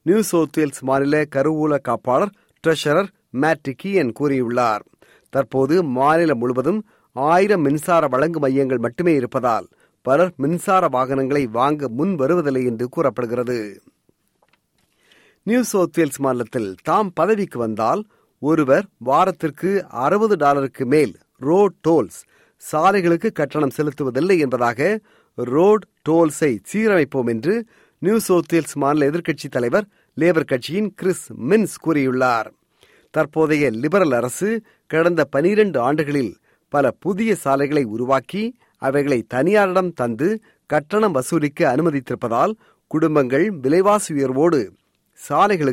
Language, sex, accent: Tamil, male, native